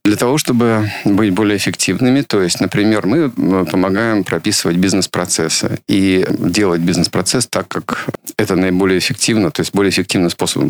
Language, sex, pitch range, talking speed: Russian, male, 90-105 Hz, 145 wpm